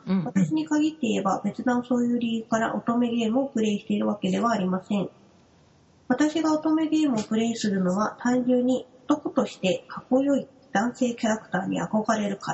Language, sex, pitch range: Japanese, female, 205-260 Hz